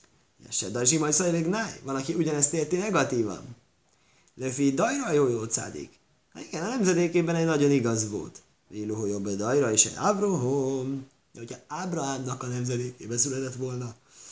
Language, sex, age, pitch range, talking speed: Hungarian, male, 20-39, 120-155 Hz, 145 wpm